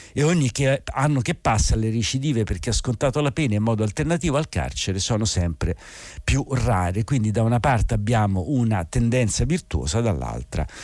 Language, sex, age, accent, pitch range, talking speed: Italian, male, 50-69, native, 95-125 Hz, 165 wpm